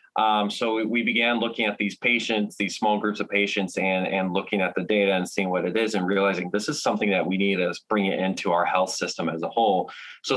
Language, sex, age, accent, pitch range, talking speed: English, male, 20-39, American, 95-105 Hz, 250 wpm